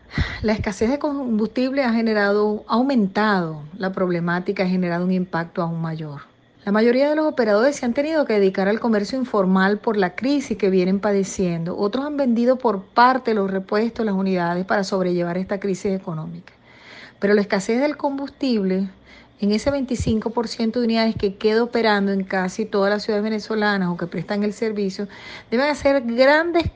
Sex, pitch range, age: female, 195-240 Hz, 40-59